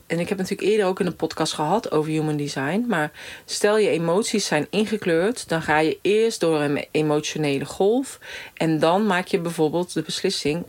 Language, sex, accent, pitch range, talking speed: Dutch, female, Dutch, 145-180 Hz, 190 wpm